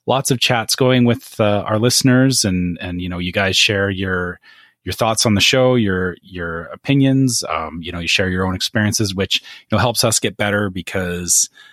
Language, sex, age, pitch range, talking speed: English, male, 30-49, 90-115 Hz, 205 wpm